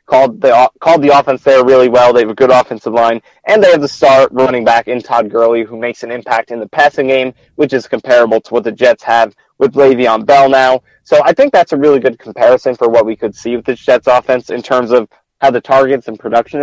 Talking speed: 250 wpm